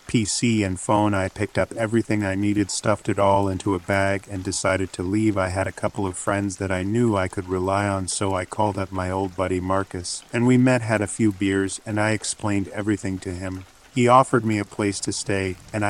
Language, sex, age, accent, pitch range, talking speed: English, male, 40-59, American, 95-105 Hz, 230 wpm